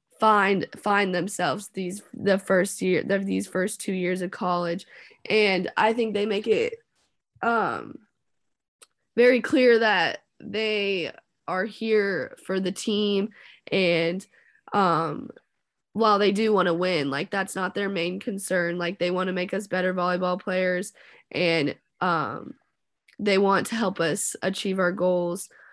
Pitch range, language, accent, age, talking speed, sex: 175-200 Hz, English, American, 20-39, 145 wpm, female